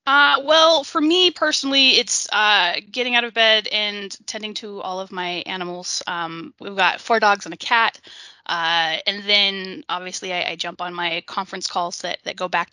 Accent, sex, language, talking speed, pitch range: American, female, English, 195 wpm, 175-215 Hz